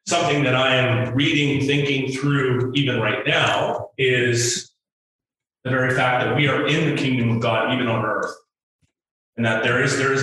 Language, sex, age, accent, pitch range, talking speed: English, male, 30-49, American, 120-150 Hz, 180 wpm